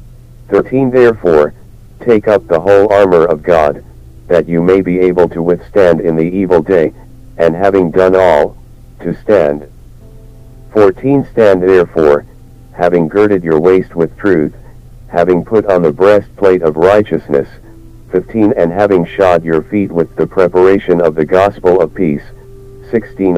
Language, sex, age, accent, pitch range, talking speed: English, male, 50-69, American, 85-110 Hz, 145 wpm